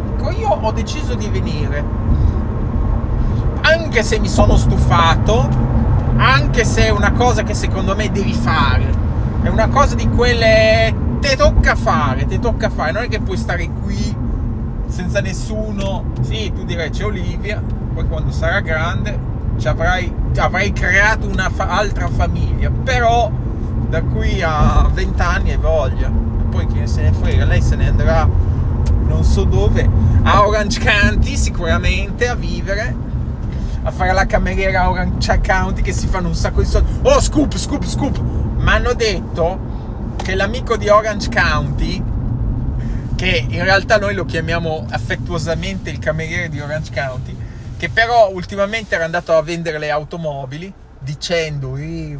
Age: 20-39